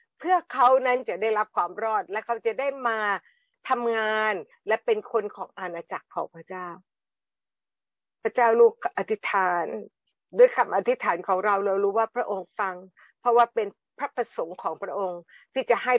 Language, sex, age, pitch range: Thai, female, 60-79, 195-245 Hz